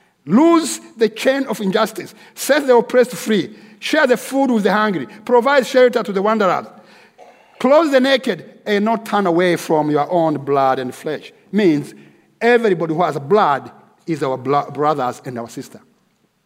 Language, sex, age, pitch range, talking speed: English, male, 50-69, 160-230 Hz, 165 wpm